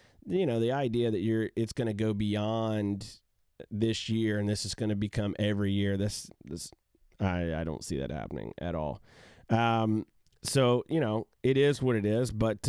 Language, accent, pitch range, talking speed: English, American, 105-125 Hz, 195 wpm